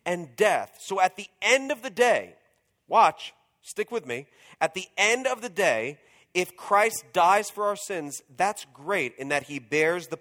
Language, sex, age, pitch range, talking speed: English, male, 40-59, 175-240 Hz, 190 wpm